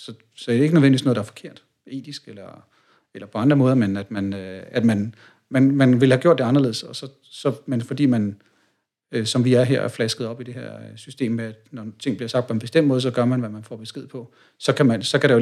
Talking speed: 275 wpm